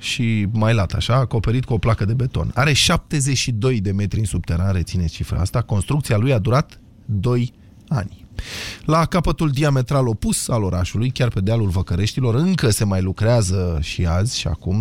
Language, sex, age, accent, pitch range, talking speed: Romanian, male, 20-39, native, 100-135 Hz, 175 wpm